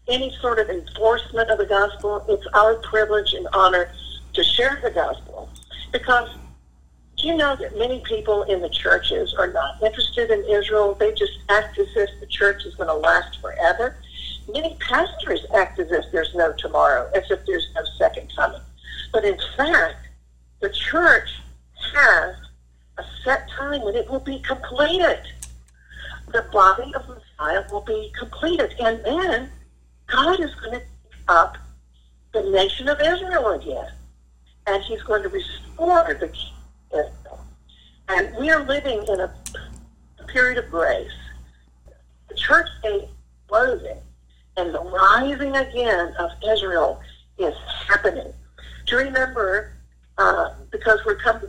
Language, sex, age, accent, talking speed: English, female, 50-69, American, 150 wpm